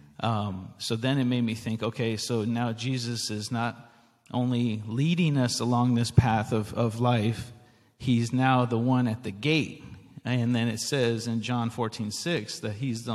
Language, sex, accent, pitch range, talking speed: English, male, American, 110-130 Hz, 185 wpm